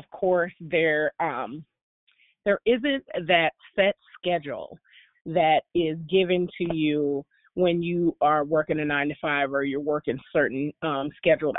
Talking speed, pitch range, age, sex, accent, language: 135 wpm, 155-180 Hz, 30-49, female, American, English